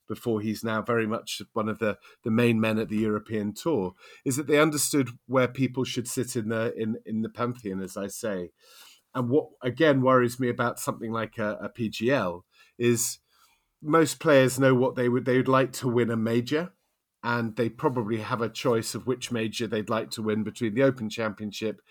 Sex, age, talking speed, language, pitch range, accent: male, 40-59, 205 wpm, English, 110-130 Hz, British